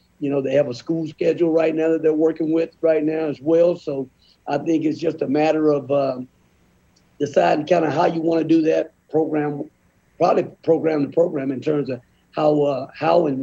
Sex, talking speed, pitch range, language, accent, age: male, 215 wpm, 145-170 Hz, English, American, 50-69